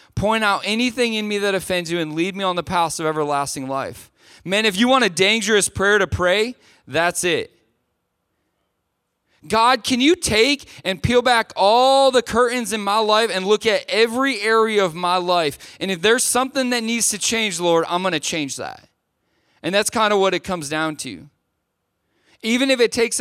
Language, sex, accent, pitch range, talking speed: English, male, American, 165-215 Hz, 195 wpm